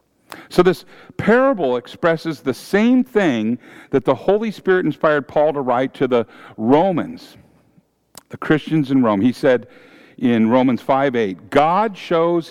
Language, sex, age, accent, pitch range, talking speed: English, male, 50-69, American, 140-180 Hz, 140 wpm